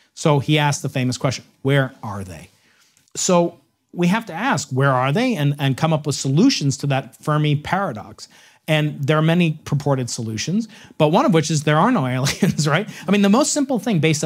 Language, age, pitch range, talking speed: English, 40-59, 130-170 Hz, 210 wpm